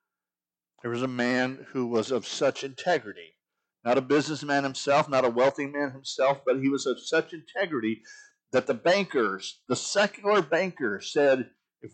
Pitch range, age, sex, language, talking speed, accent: 115-150 Hz, 50-69, male, English, 160 wpm, American